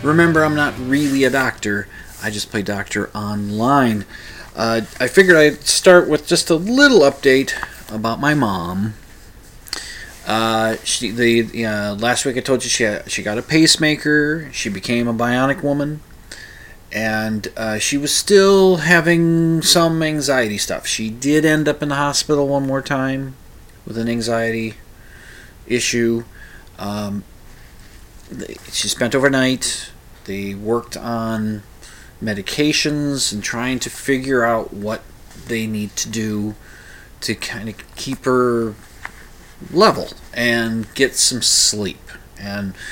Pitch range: 105-135 Hz